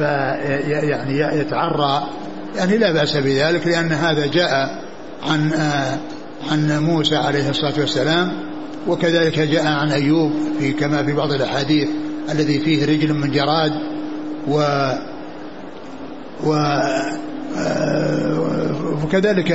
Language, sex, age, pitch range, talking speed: Arabic, male, 60-79, 155-175 Hz, 95 wpm